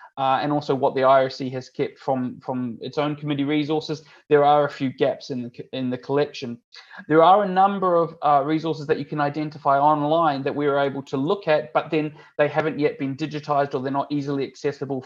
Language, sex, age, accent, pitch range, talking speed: English, male, 20-39, Australian, 130-150 Hz, 215 wpm